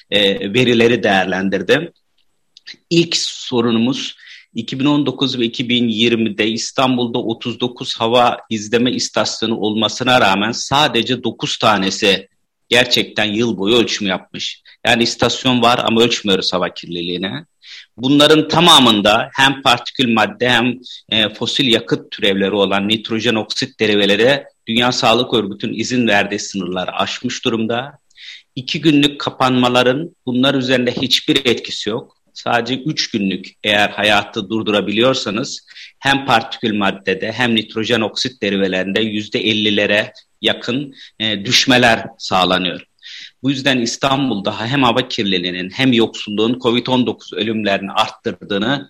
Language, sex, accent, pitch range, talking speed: Turkish, male, native, 105-125 Hz, 110 wpm